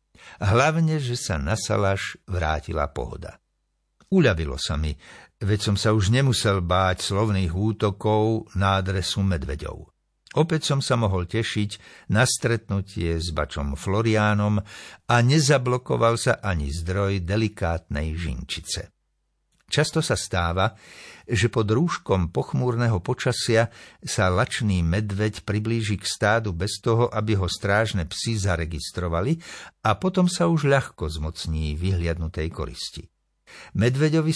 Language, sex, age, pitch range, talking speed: Slovak, male, 60-79, 90-120 Hz, 115 wpm